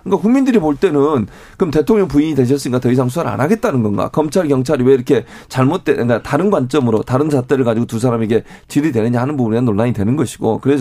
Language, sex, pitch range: Korean, male, 125-165 Hz